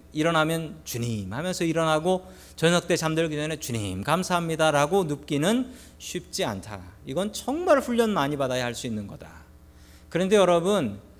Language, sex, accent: Korean, male, native